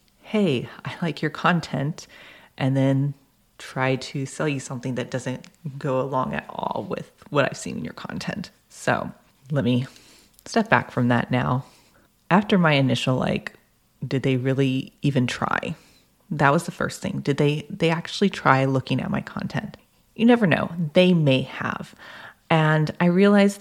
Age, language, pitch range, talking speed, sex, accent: 30-49, English, 130-165 Hz, 165 wpm, female, American